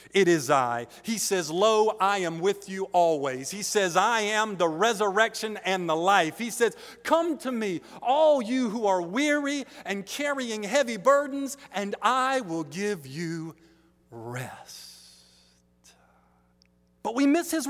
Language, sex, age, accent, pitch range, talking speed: English, male, 40-59, American, 145-220 Hz, 150 wpm